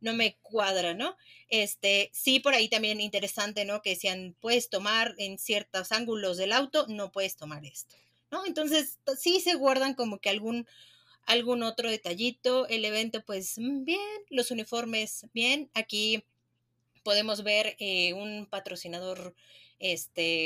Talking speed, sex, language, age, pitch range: 150 wpm, female, Spanish, 30-49, 190-255 Hz